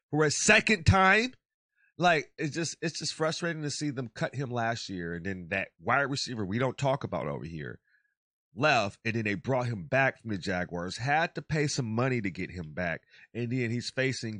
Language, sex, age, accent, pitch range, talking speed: English, male, 30-49, American, 105-145 Hz, 210 wpm